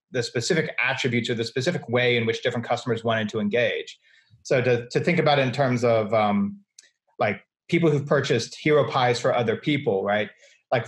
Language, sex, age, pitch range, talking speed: English, male, 30-49, 115-145 Hz, 195 wpm